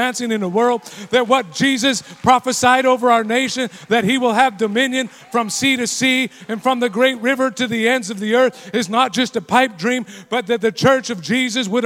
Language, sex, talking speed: English, male, 220 wpm